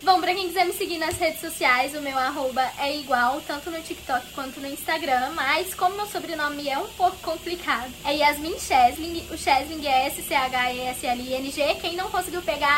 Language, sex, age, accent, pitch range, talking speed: Portuguese, female, 10-29, Brazilian, 285-355 Hz, 185 wpm